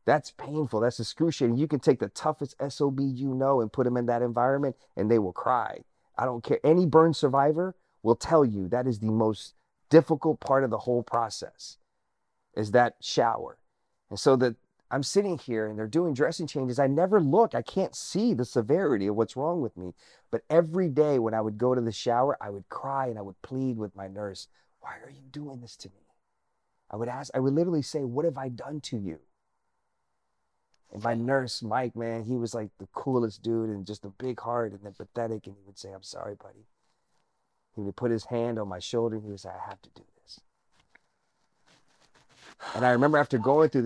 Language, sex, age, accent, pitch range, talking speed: English, male, 30-49, American, 110-140 Hz, 215 wpm